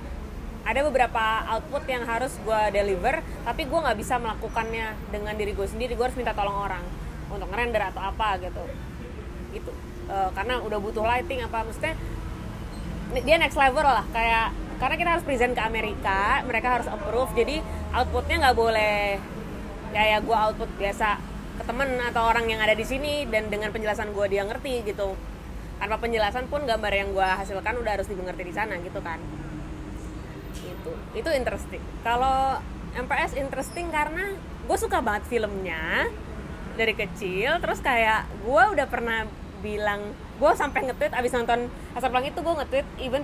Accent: native